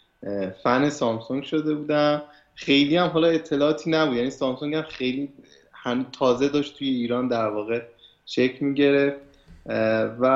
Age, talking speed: 30-49, 125 wpm